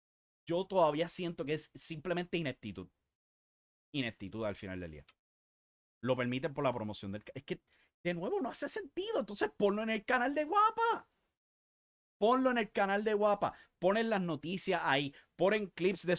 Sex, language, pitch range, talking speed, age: male, English, 130-180 Hz, 165 wpm, 30-49